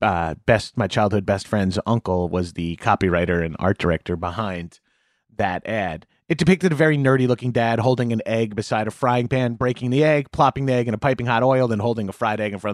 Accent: American